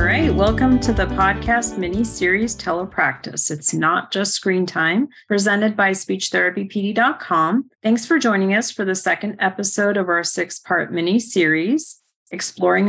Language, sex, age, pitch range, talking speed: English, female, 40-59, 180-220 Hz, 135 wpm